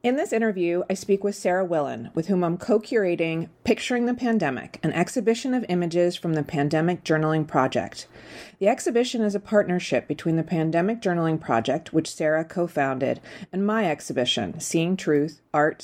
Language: English